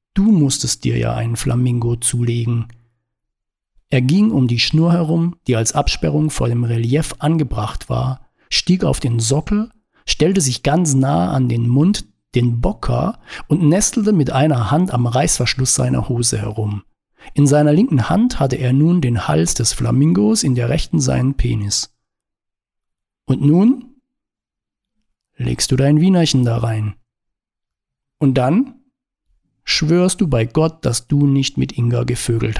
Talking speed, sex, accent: 145 wpm, male, German